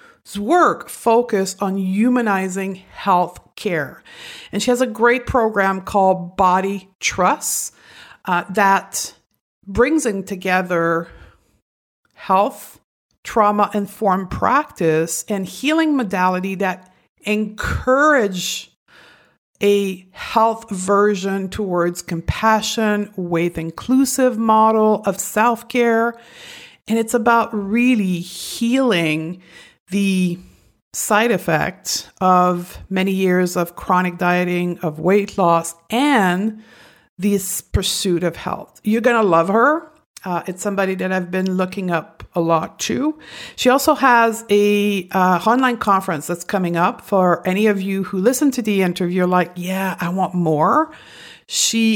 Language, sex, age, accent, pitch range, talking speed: English, female, 50-69, American, 185-225 Hz, 115 wpm